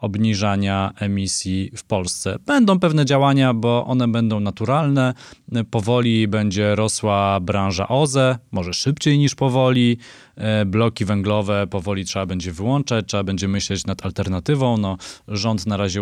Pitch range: 105-125 Hz